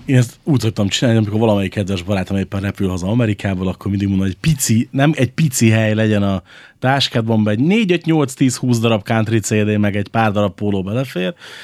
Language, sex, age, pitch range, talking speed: Hungarian, male, 30-49, 95-120 Hz, 190 wpm